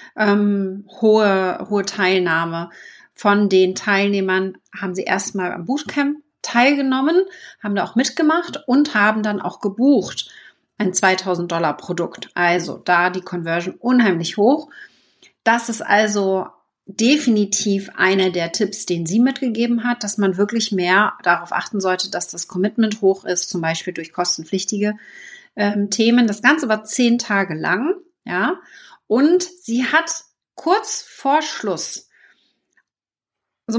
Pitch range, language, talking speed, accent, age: 190-250 Hz, German, 130 wpm, German, 30-49